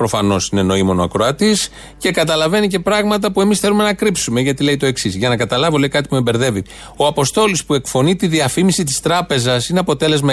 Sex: male